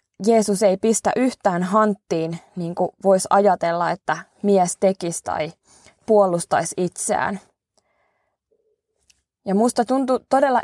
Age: 20-39